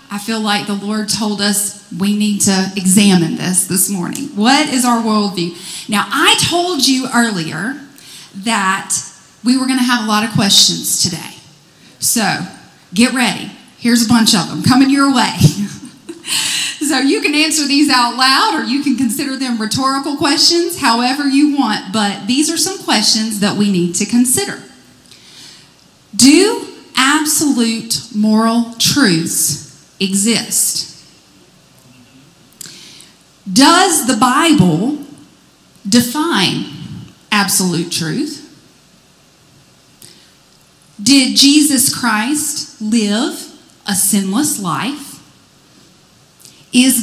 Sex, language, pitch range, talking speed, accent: female, English, 205-285 Hz, 115 wpm, American